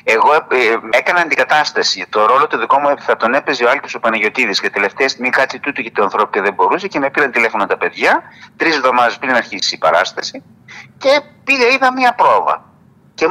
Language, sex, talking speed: Greek, male, 205 wpm